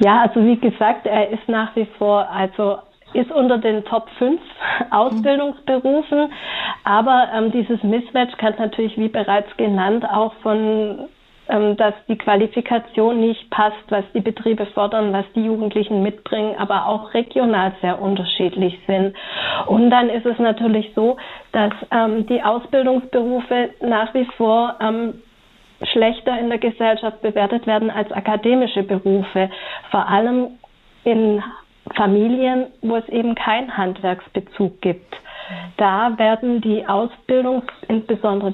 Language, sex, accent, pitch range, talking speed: German, female, German, 200-235 Hz, 130 wpm